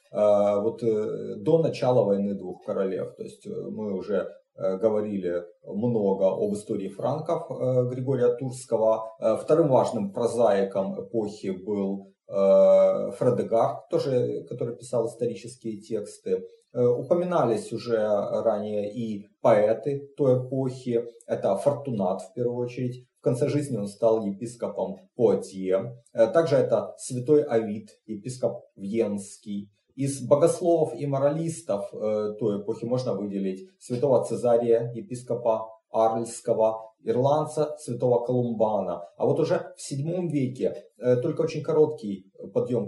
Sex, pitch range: male, 100-130 Hz